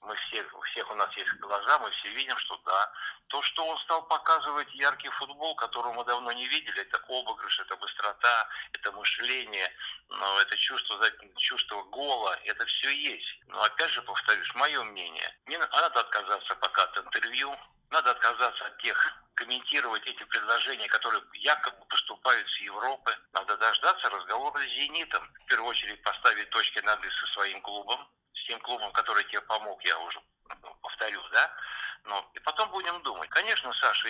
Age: 60-79